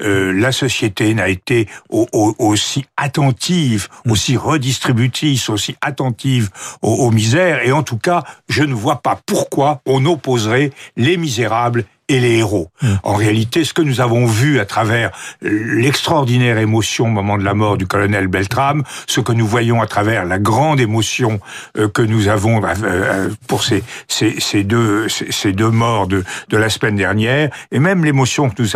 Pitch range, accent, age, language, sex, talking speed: 110-140 Hz, French, 60-79, French, male, 165 wpm